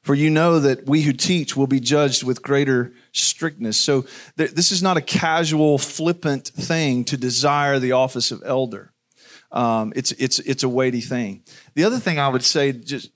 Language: English